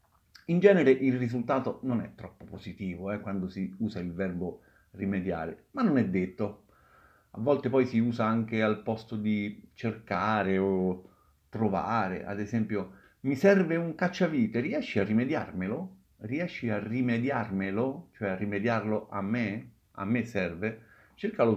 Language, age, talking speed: Italian, 50-69, 145 wpm